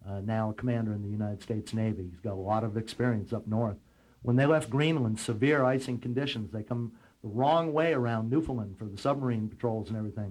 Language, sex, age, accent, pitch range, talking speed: English, male, 60-79, American, 110-135 Hz, 215 wpm